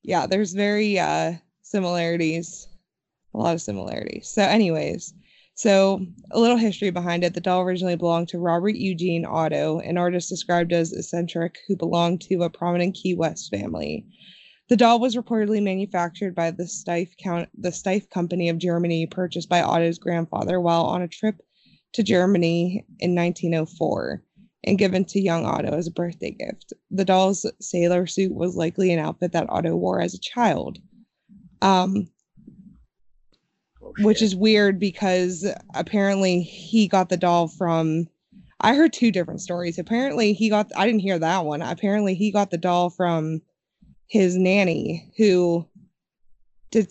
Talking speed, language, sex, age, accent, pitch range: 150 wpm, English, female, 20-39, American, 170-200 Hz